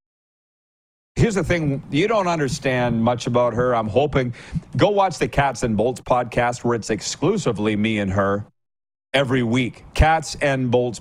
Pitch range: 115-155 Hz